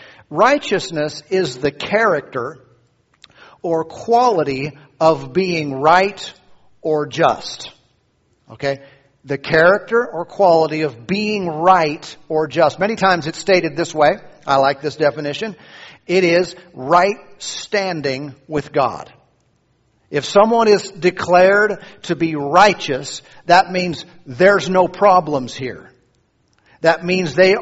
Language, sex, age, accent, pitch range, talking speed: English, male, 50-69, American, 155-195 Hz, 115 wpm